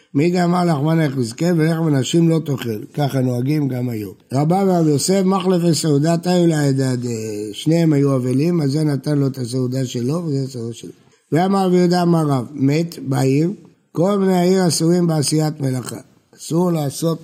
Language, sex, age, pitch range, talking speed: Hebrew, male, 60-79, 135-175 Hz, 160 wpm